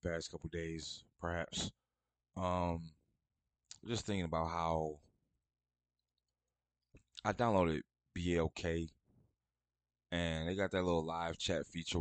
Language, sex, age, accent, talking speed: English, male, 20-39, American, 100 wpm